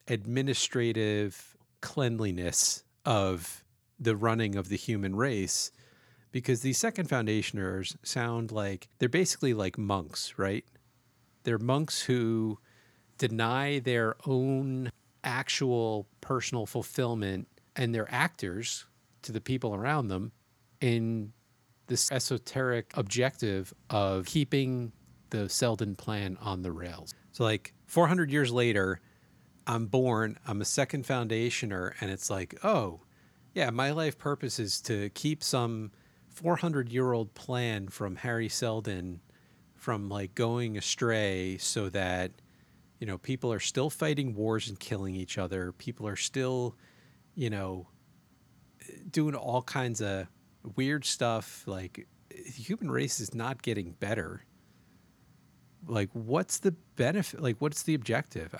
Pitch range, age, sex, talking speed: 105-130 Hz, 40-59, male, 125 wpm